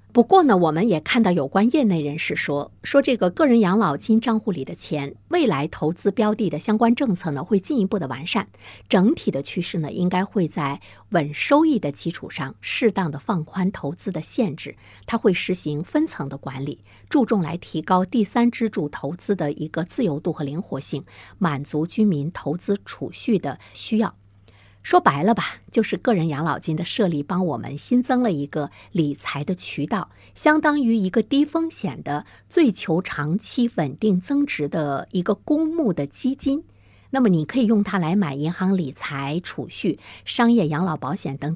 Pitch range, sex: 150-220 Hz, female